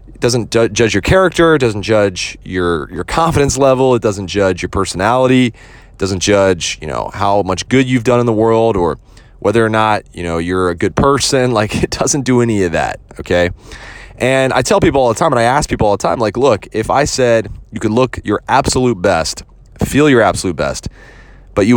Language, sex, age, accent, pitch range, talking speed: English, male, 30-49, American, 95-125 Hz, 215 wpm